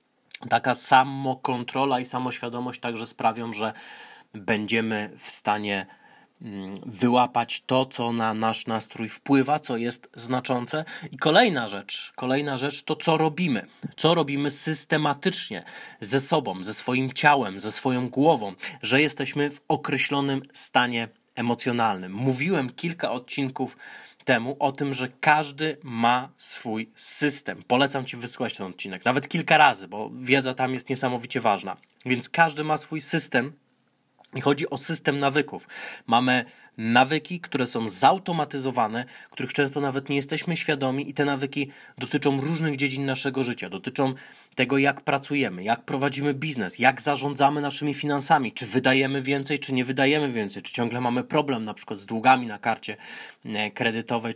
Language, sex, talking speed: Polish, male, 140 wpm